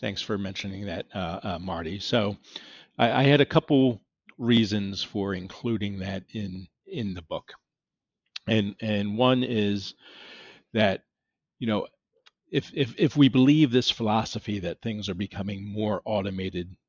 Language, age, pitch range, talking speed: English, 40-59, 100-115 Hz, 145 wpm